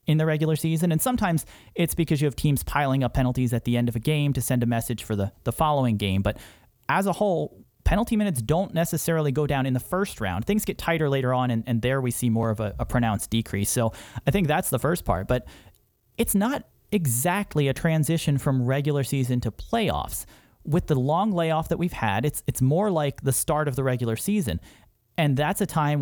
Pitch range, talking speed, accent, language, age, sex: 125-165 Hz, 225 wpm, American, English, 30-49, male